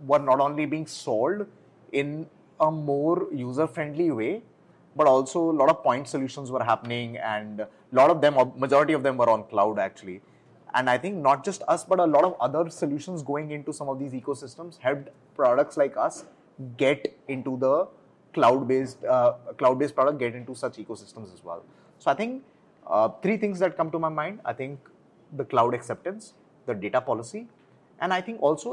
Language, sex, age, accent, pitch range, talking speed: English, male, 30-49, Indian, 115-155 Hz, 185 wpm